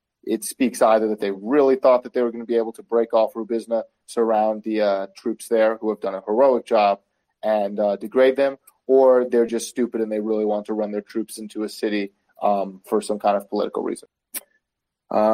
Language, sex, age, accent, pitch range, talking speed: English, male, 30-49, American, 105-120 Hz, 220 wpm